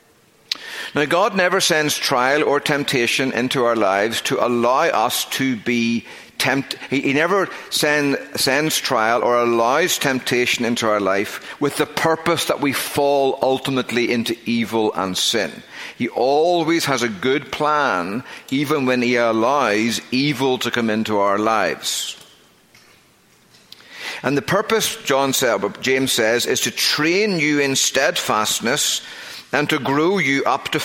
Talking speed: 135 wpm